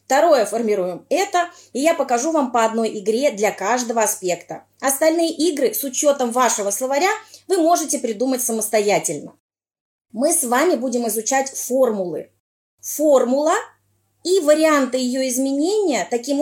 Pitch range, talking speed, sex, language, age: 230-300 Hz, 130 wpm, female, Russian, 20-39